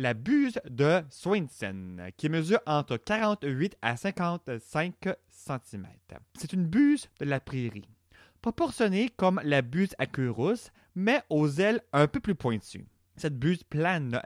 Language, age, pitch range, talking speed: French, 30-49, 130-195 Hz, 145 wpm